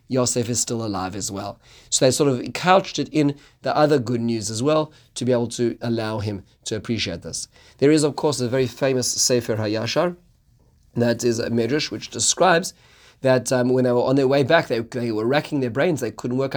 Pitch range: 115-135 Hz